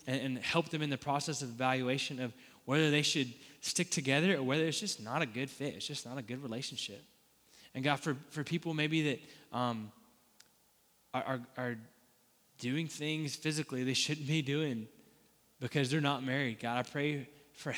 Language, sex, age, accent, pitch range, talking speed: English, male, 10-29, American, 125-145 Hz, 180 wpm